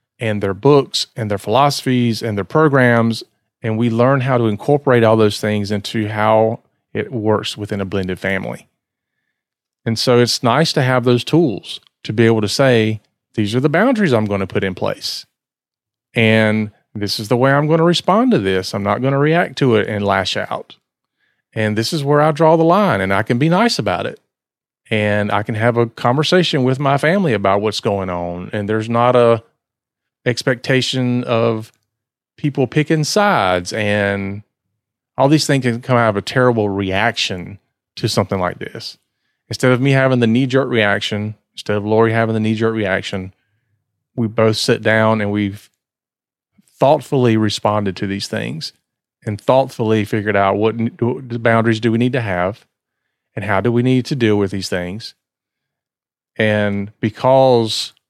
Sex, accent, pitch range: male, American, 105-130 Hz